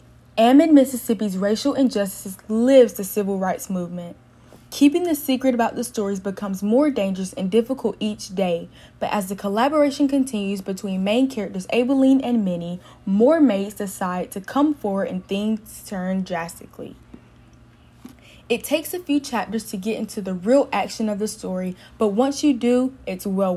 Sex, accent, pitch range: female, American, 190-255 Hz